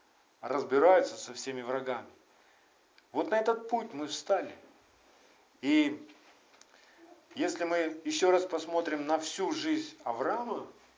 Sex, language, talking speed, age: male, Russian, 110 wpm, 50-69